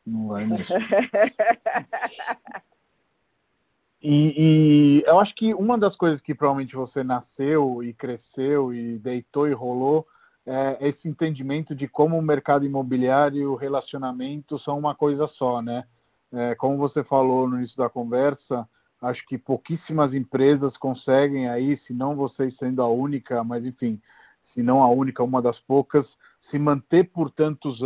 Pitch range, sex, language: 125-150 Hz, male, Portuguese